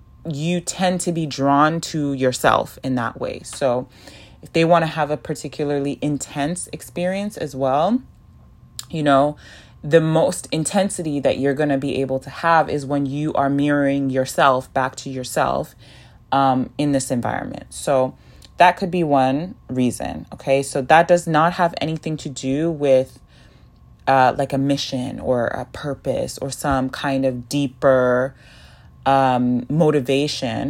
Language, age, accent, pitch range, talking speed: English, 20-39, American, 130-165 Hz, 150 wpm